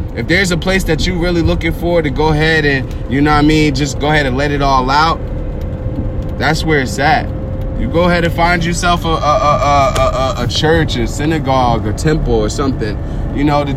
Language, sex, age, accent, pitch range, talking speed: English, male, 20-39, American, 120-150 Hz, 225 wpm